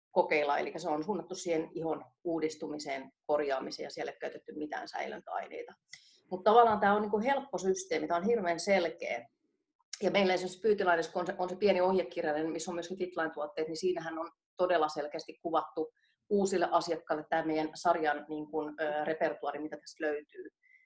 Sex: female